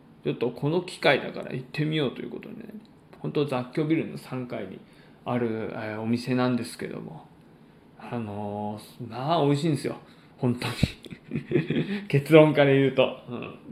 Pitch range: 130-205 Hz